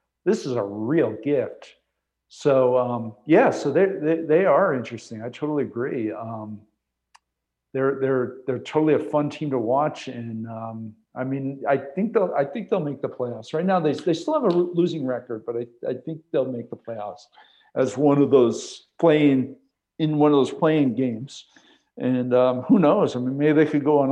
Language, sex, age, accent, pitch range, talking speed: English, male, 50-69, American, 120-150 Hz, 195 wpm